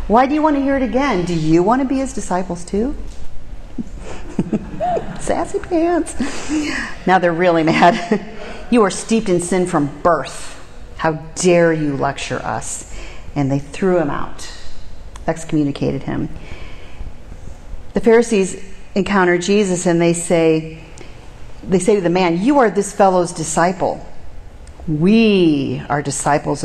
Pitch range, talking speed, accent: 145-200 Hz, 135 wpm, American